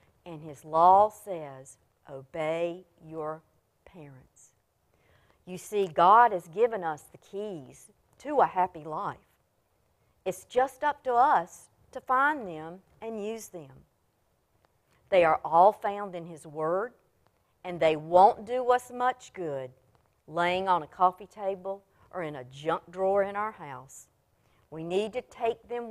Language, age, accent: English, 50-69, American